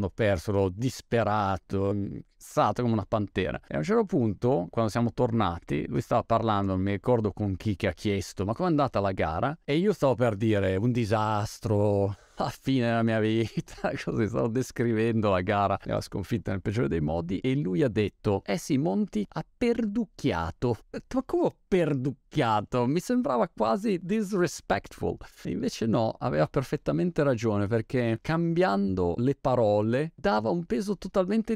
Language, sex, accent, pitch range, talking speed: Italian, male, native, 100-140 Hz, 160 wpm